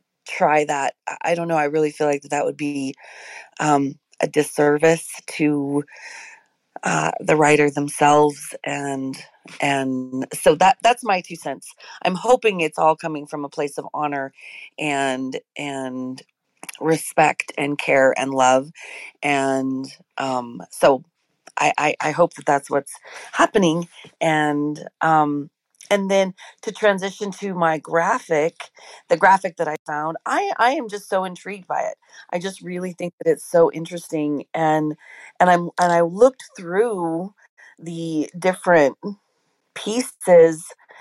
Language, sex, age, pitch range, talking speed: English, female, 40-59, 145-185 Hz, 140 wpm